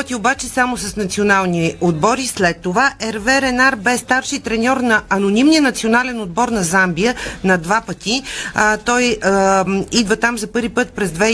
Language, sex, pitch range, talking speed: Bulgarian, female, 200-250 Hz, 165 wpm